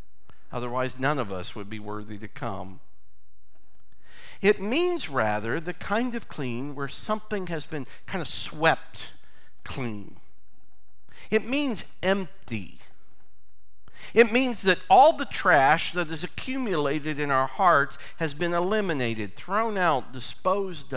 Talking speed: 130 wpm